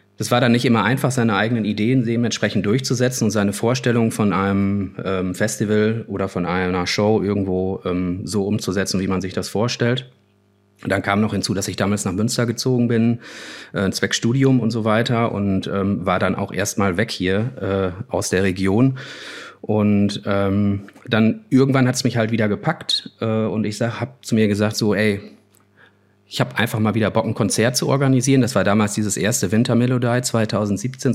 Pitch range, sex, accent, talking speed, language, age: 95-110 Hz, male, German, 175 wpm, German, 30-49